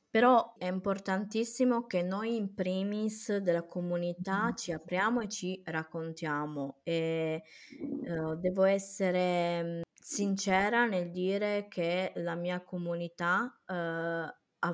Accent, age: native, 20-39